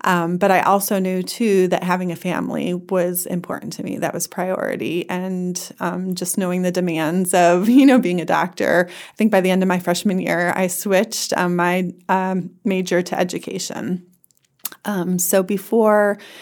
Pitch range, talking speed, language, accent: 180-205 Hz, 180 wpm, English, American